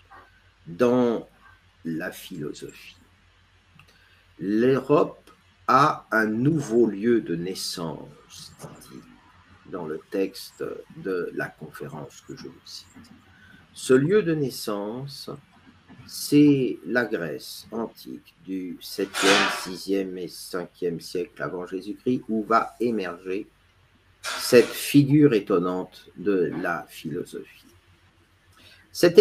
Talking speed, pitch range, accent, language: 95 wpm, 90-125 Hz, French, French